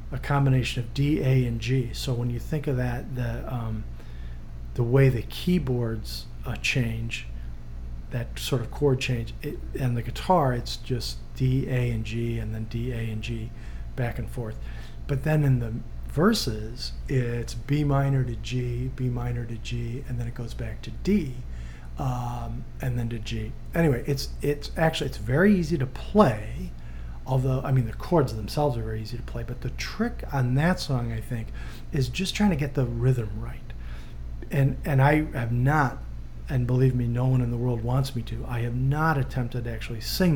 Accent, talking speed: American, 195 wpm